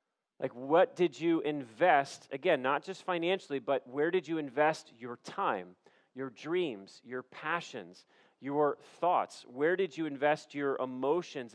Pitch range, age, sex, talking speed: 130-160 Hz, 40-59, male, 145 wpm